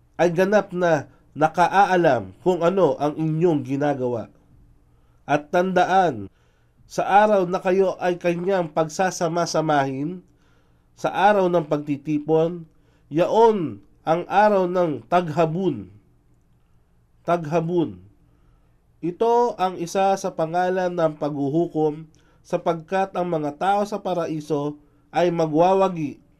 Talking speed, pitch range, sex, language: 100 wpm, 140-180 Hz, male, English